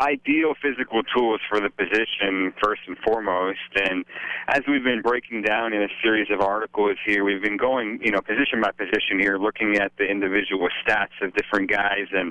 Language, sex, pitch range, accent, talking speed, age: English, male, 95-110 Hz, American, 190 wpm, 40-59